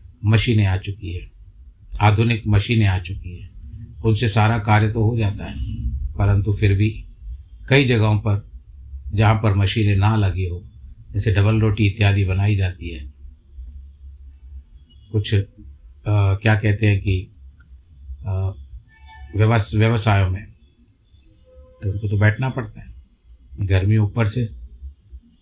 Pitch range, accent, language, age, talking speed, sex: 80-110 Hz, native, Hindi, 50-69, 125 wpm, male